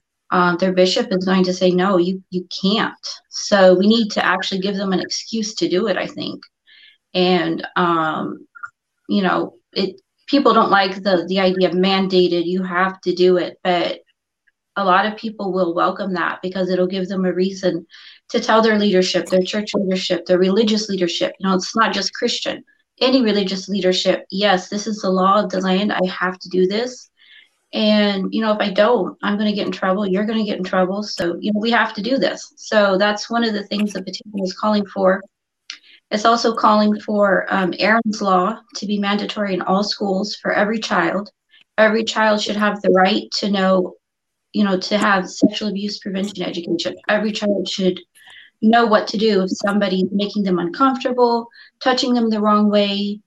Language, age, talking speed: English, 30-49, 200 wpm